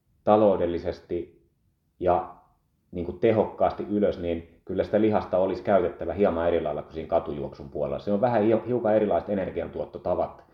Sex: male